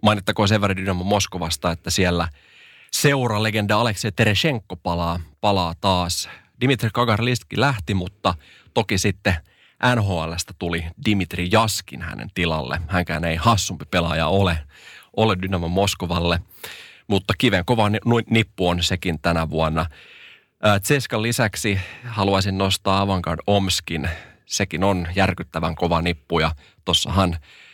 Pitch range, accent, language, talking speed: 85-110 Hz, native, Finnish, 115 wpm